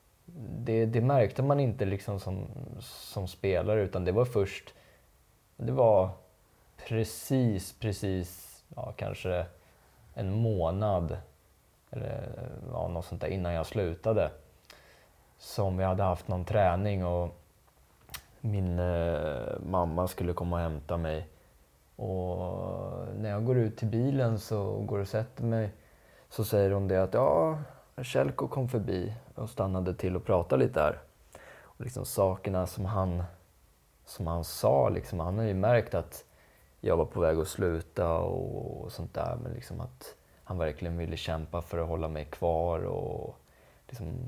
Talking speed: 150 wpm